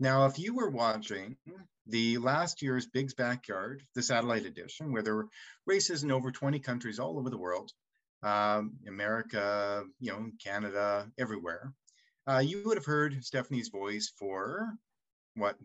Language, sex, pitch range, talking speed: English, male, 110-140 Hz, 155 wpm